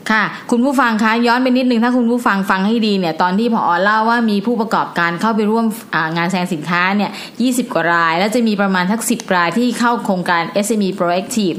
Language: Thai